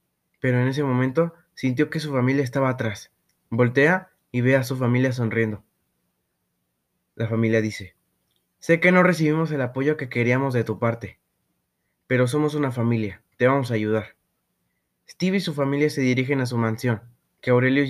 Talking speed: 170 wpm